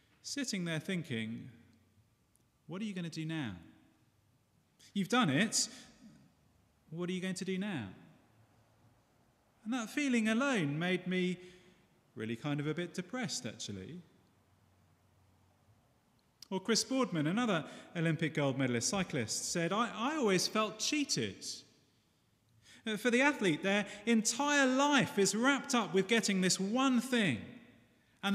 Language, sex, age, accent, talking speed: English, male, 30-49, British, 130 wpm